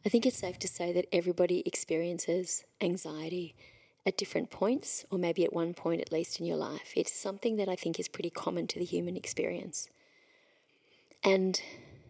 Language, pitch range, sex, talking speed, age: English, 175-195 Hz, female, 180 wpm, 30-49